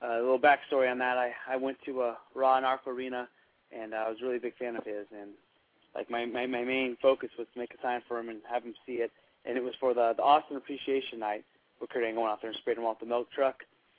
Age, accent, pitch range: 20-39, American, 115-130 Hz